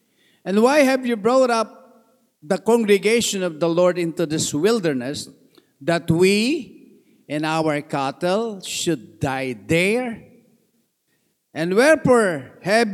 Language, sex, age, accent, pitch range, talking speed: English, male, 50-69, Filipino, 150-210 Hz, 115 wpm